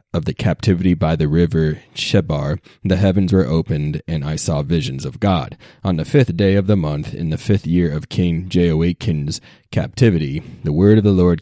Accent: American